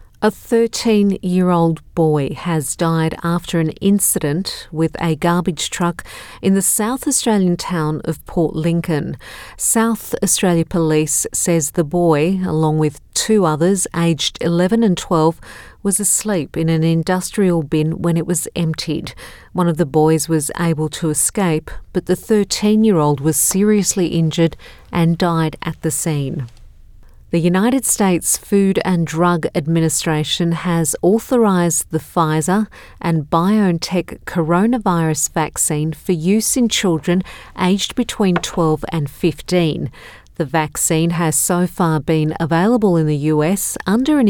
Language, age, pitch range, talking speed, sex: English, 50-69, 160-190 Hz, 135 wpm, female